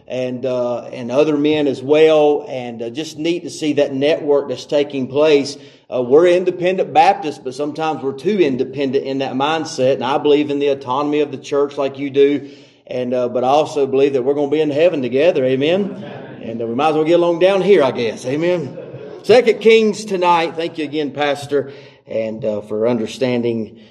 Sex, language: male, English